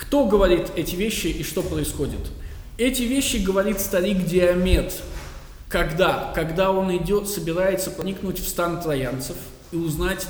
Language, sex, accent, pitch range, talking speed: Russian, male, native, 140-185 Hz, 135 wpm